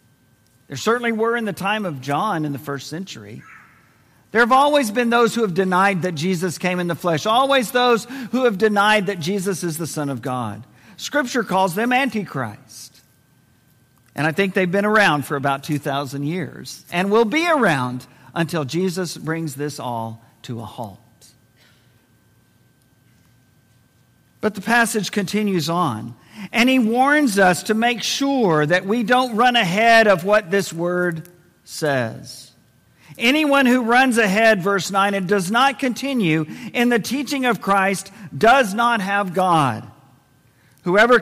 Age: 50-69